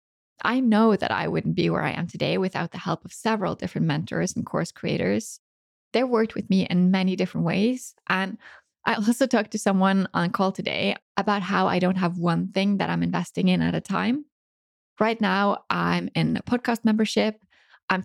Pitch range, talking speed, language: 180-220 Hz, 200 wpm, English